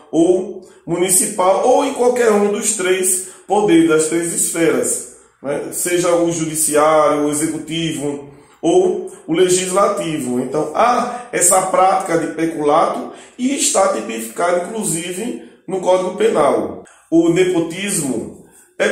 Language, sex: Portuguese, male